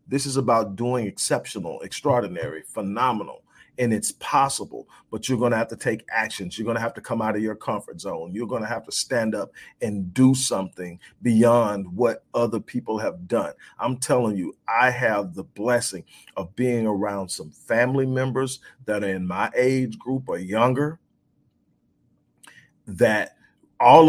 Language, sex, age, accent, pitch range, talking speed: English, male, 40-59, American, 110-130 Hz, 170 wpm